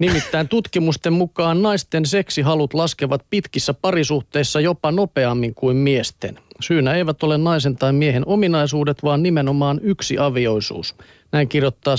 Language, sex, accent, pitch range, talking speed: Finnish, male, native, 125-160 Hz, 125 wpm